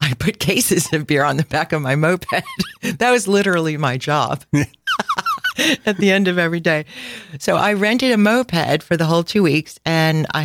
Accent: American